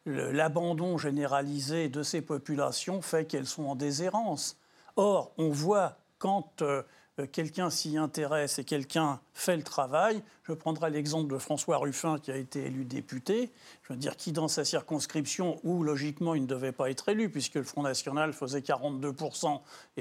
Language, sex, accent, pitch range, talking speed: French, male, French, 145-185 Hz, 160 wpm